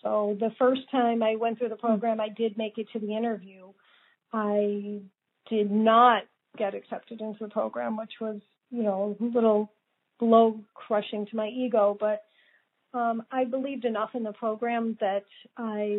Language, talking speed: English, 170 wpm